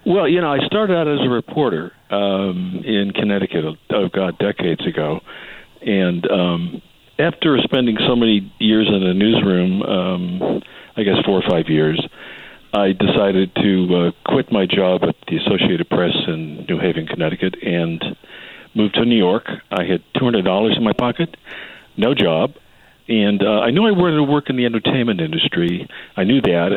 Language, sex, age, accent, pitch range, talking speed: English, male, 60-79, American, 90-120 Hz, 170 wpm